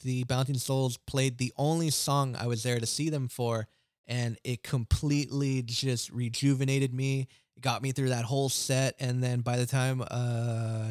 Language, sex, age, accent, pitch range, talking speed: English, male, 20-39, American, 115-135 Hz, 180 wpm